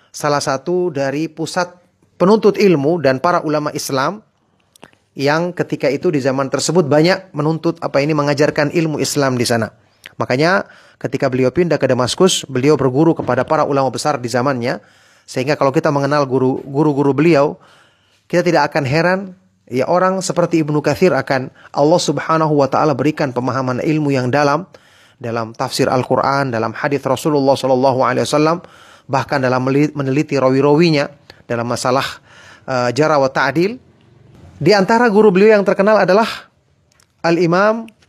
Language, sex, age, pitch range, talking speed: Indonesian, male, 30-49, 135-175 Hz, 145 wpm